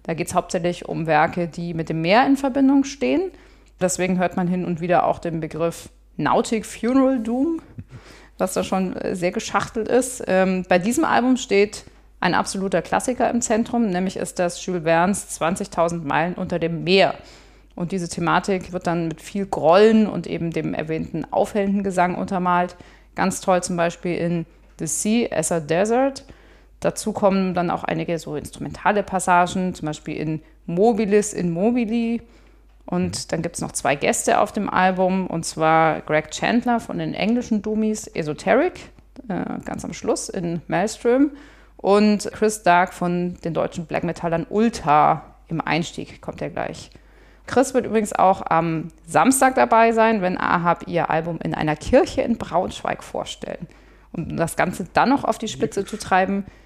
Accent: German